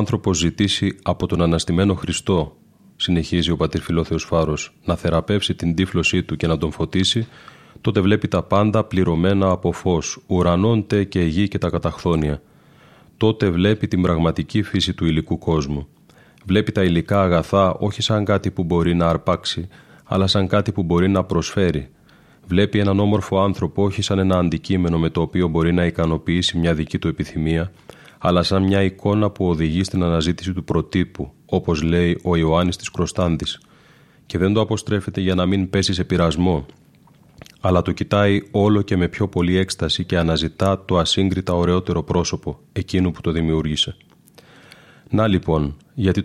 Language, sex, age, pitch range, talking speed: Greek, male, 30-49, 85-100 Hz, 165 wpm